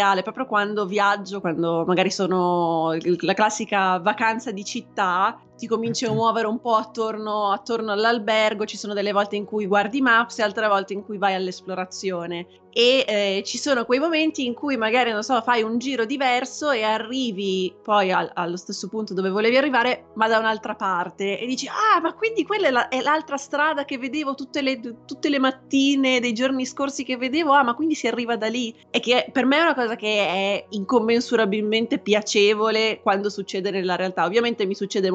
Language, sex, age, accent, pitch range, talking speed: Italian, female, 20-39, native, 200-240 Hz, 190 wpm